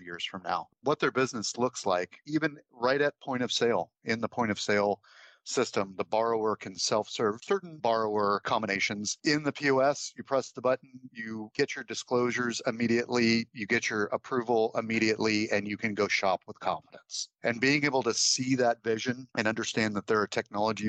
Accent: American